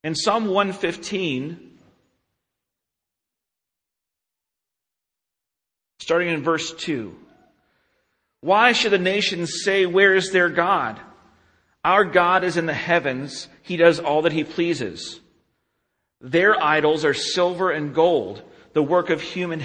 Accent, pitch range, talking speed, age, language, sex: American, 140-180 Hz, 115 wpm, 40-59, English, male